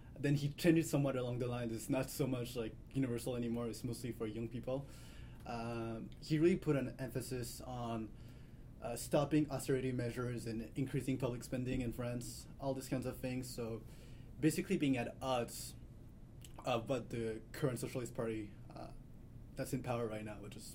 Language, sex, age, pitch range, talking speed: English, male, 20-39, 120-145 Hz, 175 wpm